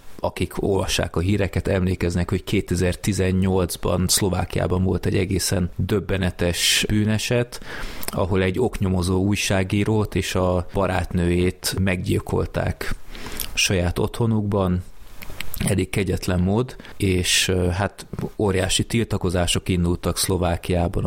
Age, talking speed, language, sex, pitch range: 30-49, 90 wpm, Hungarian, male, 90-100 Hz